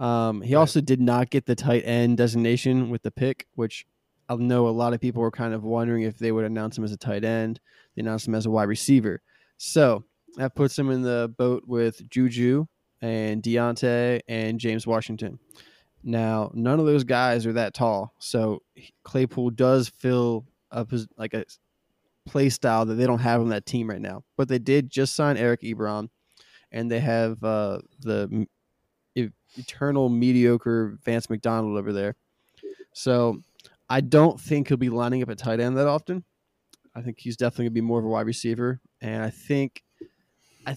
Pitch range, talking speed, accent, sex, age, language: 115-130 Hz, 185 wpm, American, male, 20-39, English